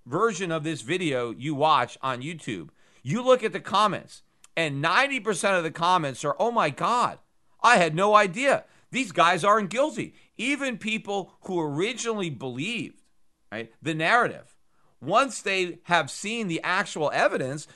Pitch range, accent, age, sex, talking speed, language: 165-220 Hz, American, 40-59, male, 150 wpm, English